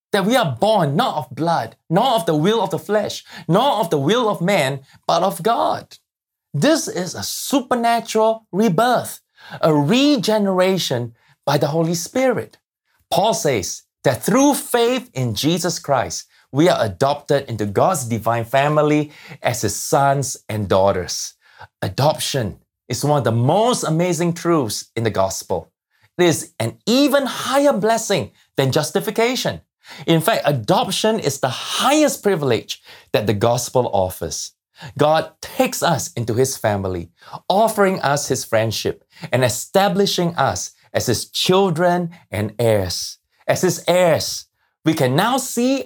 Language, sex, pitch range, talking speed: English, male, 125-200 Hz, 145 wpm